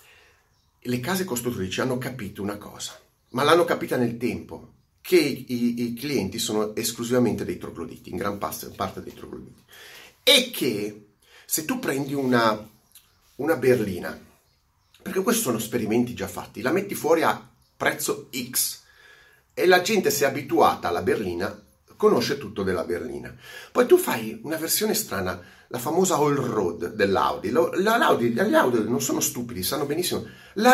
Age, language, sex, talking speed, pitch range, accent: 40-59, Italian, male, 150 wpm, 105-160 Hz, native